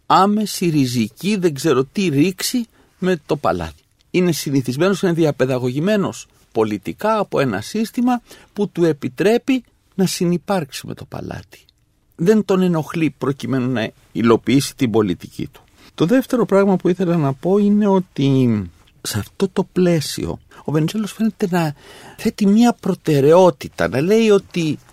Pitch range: 125-190 Hz